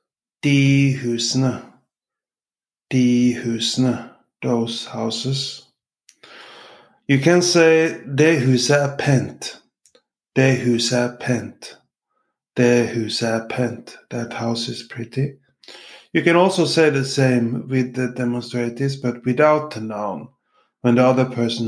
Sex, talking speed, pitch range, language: male, 110 wpm, 120-140 Hz, English